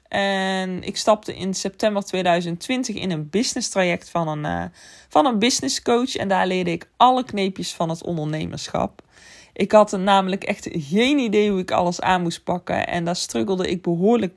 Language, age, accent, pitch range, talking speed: Dutch, 20-39, Dutch, 175-230 Hz, 175 wpm